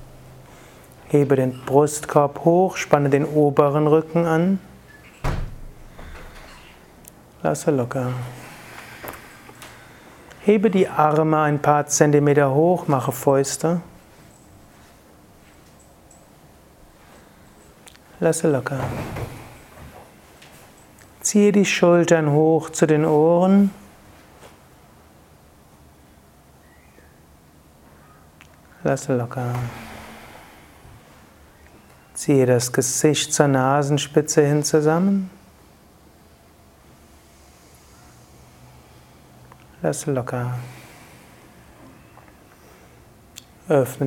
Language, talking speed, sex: German, 55 wpm, male